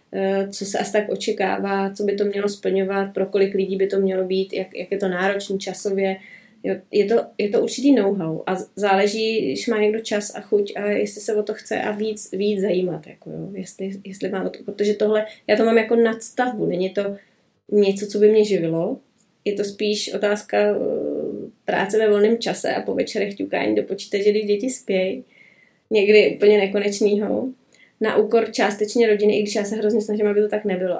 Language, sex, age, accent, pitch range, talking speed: Czech, female, 20-39, native, 190-215 Hz, 180 wpm